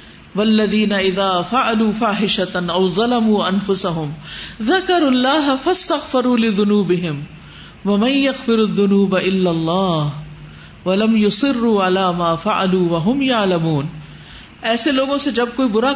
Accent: Indian